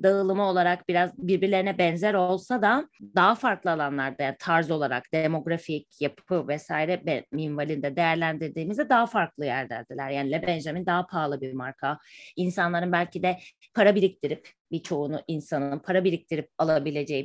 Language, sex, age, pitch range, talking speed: Turkish, female, 30-49, 165-230 Hz, 130 wpm